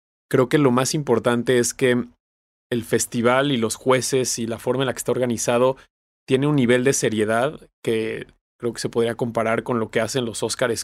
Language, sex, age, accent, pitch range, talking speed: Spanish, male, 30-49, Mexican, 110-125 Hz, 205 wpm